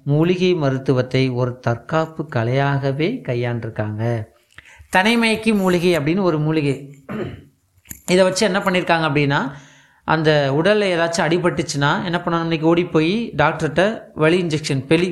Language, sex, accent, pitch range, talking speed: Tamil, male, native, 135-175 Hz, 105 wpm